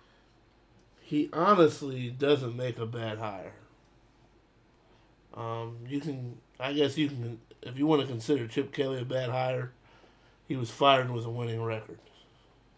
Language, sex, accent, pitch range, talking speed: English, male, American, 115-130 Hz, 145 wpm